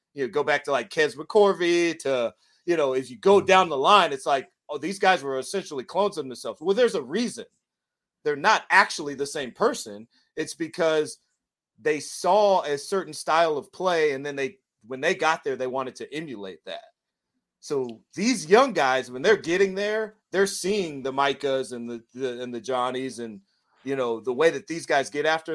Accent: American